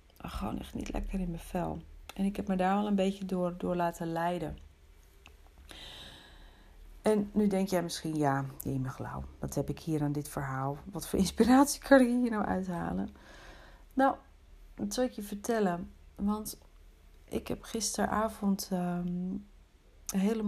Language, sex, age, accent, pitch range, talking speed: Dutch, female, 40-59, Dutch, 160-205 Hz, 165 wpm